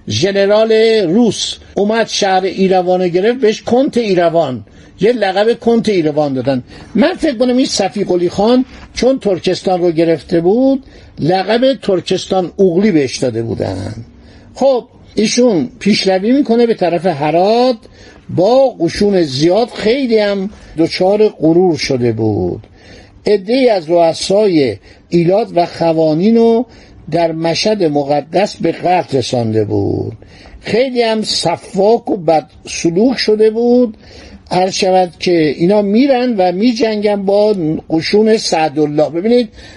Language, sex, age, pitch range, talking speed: Persian, male, 60-79, 165-225 Hz, 120 wpm